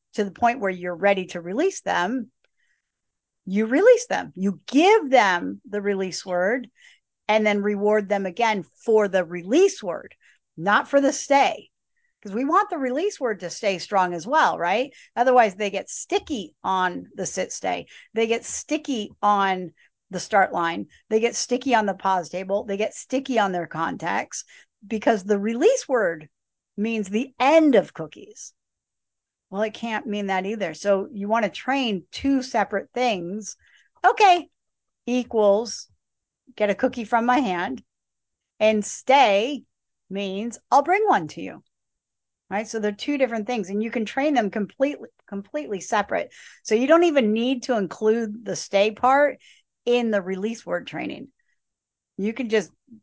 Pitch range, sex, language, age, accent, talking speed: 200-260 Hz, female, English, 50-69, American, 160 wpm